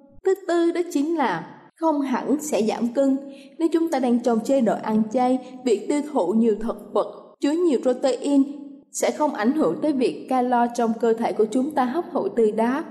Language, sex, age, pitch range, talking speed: Vietnamese, female, 20-39, 235-300 Hz, 210 wpm